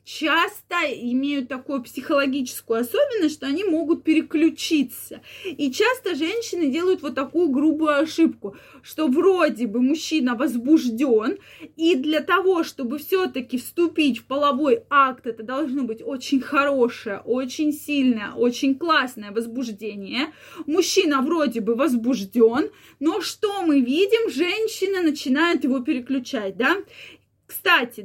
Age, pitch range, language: 20-39, 250-325 Hz, Russian